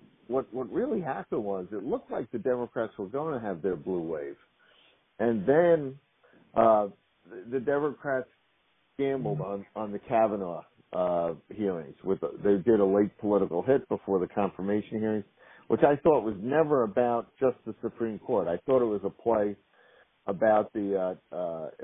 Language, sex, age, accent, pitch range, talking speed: English, male, 50-69, American, 95-120 Hz, 175 wpm